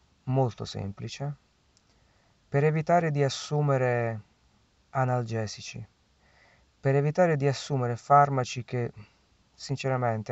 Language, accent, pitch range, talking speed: Italian, native, 95-130 Hz, 80 wpm